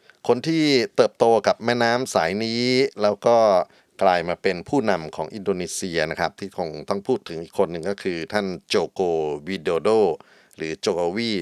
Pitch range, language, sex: 85-105 Hz, Thai, male